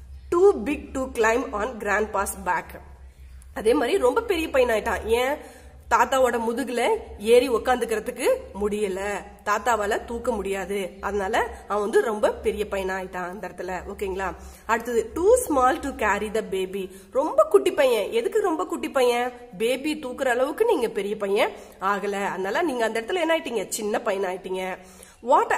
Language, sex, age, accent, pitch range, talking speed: Tamil, female, 30-49, native, 205-305 Hz, 165 wpm